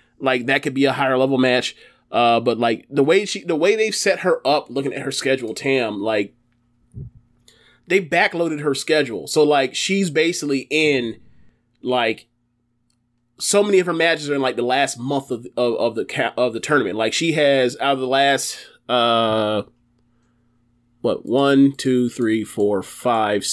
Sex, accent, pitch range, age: male, American, 120-155 Hz, 30-49